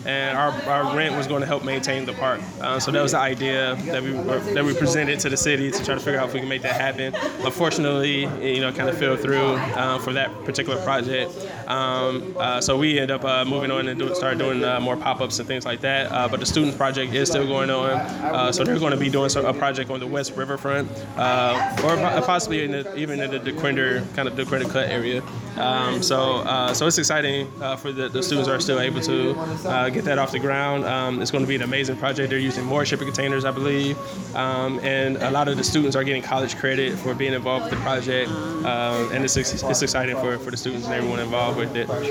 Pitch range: 130-140 Hz